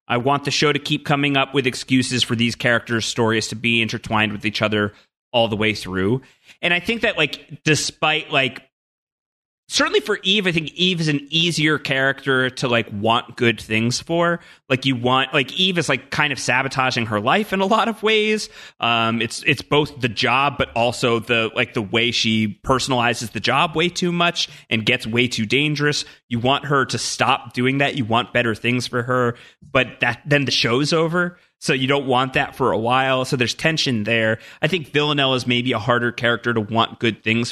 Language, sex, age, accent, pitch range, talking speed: English, male, 30-49, American, 115-145 Hz, 210 wpm